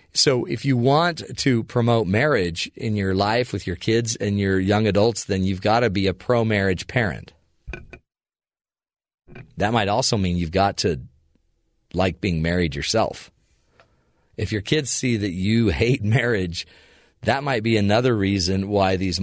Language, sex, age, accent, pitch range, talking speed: English, male, 40-59, American, 95-115 Hz, 160 wpm